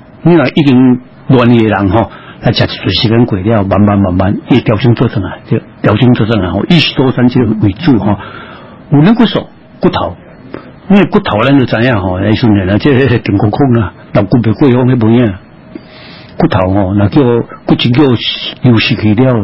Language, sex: Chinese, male